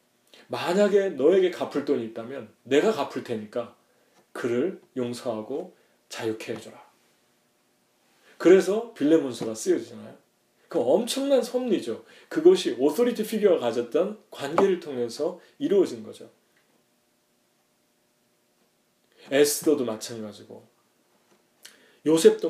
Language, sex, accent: English, male, Korean